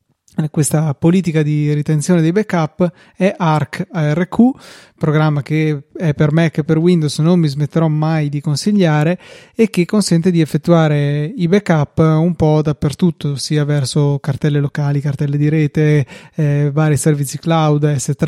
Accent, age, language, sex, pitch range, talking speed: native, 20-39, Italian, male, 150-180 Hz, 150 wpm